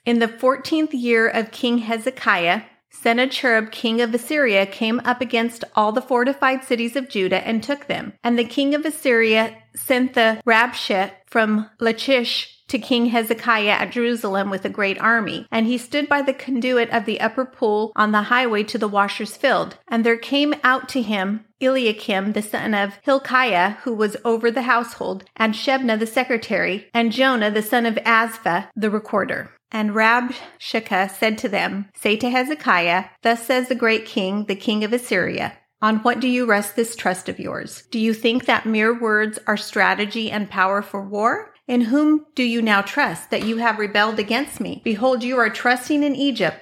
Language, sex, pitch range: English, female, 215-255 Hz